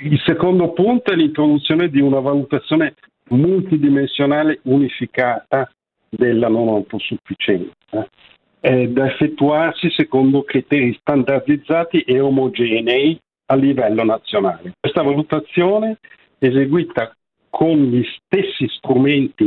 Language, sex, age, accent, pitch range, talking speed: Italian, male, 50-69, native, 125-155 Hz, 90 wpm